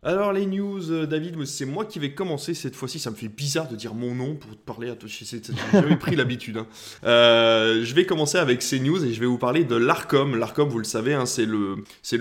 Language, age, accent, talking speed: French, 20-39, French, 245 wpm